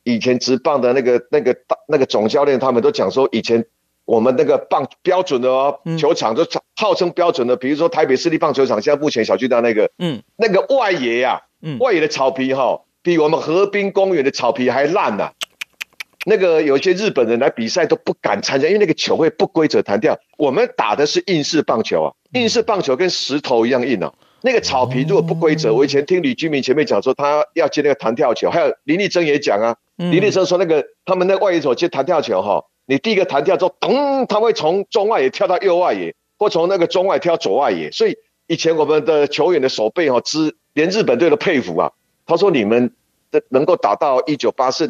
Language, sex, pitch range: Chinese, male, 135-200 Hz